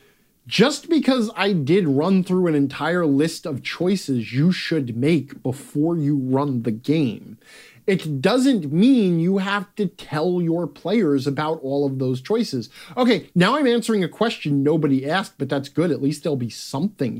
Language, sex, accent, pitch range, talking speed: English, male, American, 140-190 Hz, 170 wpm